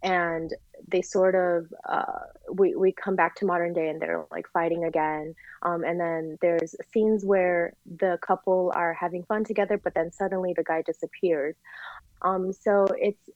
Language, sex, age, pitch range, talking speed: English, female, 20-39, 165-195 Hz, 170 wpm